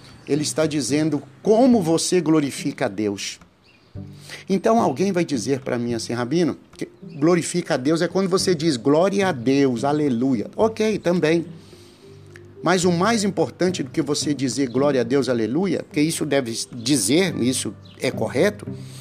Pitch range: 140-195 Hz